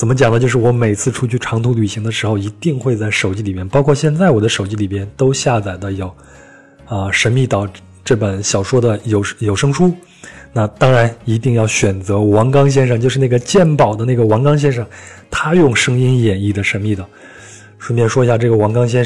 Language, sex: Chinese, male